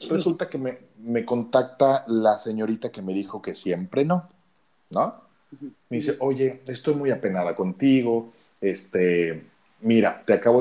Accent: Mexican